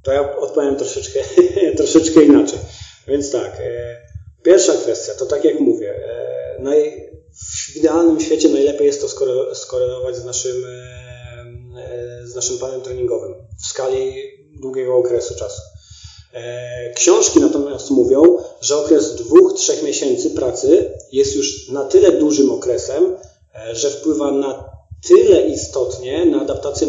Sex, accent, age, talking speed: male, native, 30-49, 120 wpm